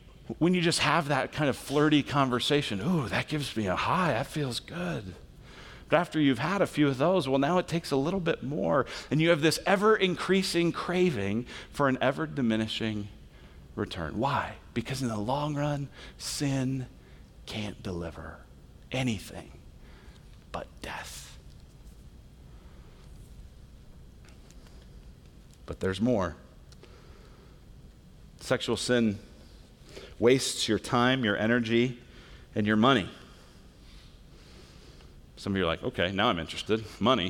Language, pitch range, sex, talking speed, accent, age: English, 125-205 Hz, male, 125 wpm, American, 40-59